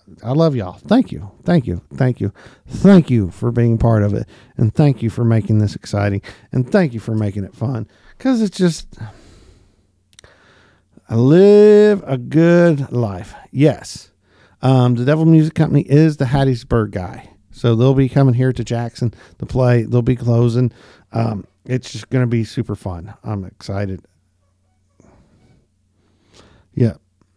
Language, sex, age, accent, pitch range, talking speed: English, male, 50-69, American, 105-155 Hz, 155 wpm